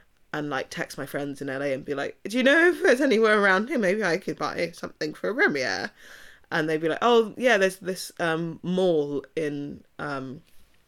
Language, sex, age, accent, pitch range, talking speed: English, female, 20-39, British, 135-165 Hz, 210 wpm